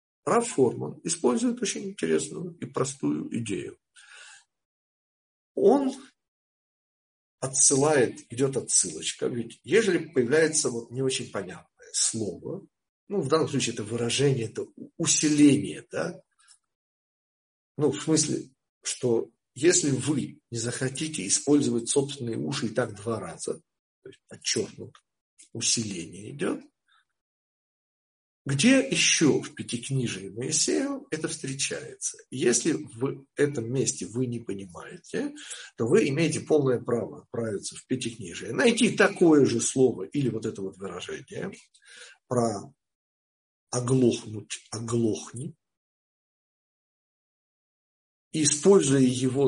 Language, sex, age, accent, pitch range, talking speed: Russian, male, 50-69, native, 115-155 Hz, 100 wpm